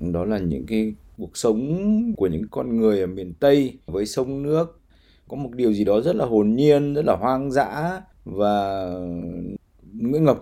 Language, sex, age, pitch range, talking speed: Vietnamese, male, 20-39, 100-145 Hz, 185 wpm